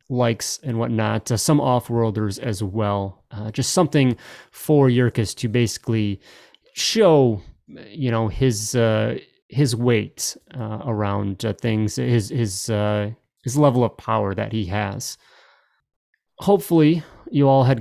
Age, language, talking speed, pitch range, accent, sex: 30-49, English, 140 wpm, 110-135 Hz, American, male